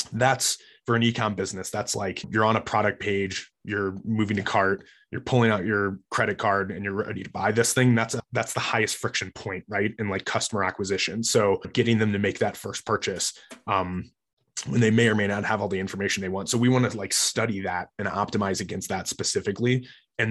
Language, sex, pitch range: English, male, 100-115 Hz